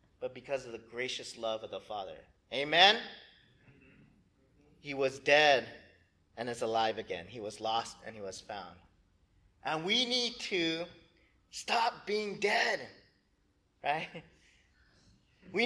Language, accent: English, American